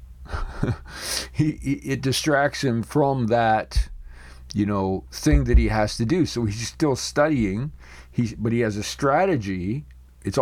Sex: male